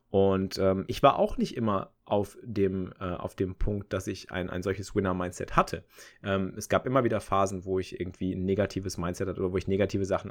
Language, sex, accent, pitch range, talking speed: German, male, German, 95-110 Hz, 220 wpm